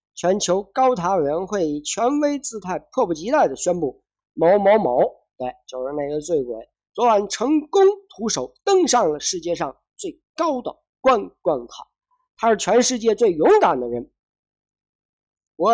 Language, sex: Chinese, male